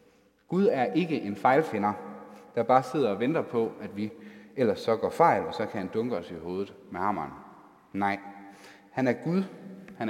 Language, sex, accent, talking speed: Danish, male, native, 190 wpm